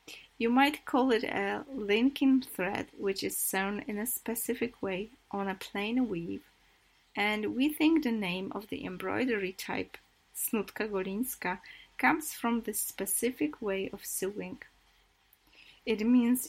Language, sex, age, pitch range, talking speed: Polish, female, 30-49, 200-250 Hz, 140 wpm